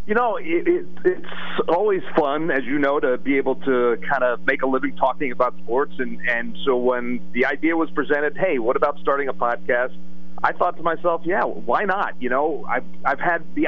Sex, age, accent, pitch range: male, 40-59, American, 125-165 Hz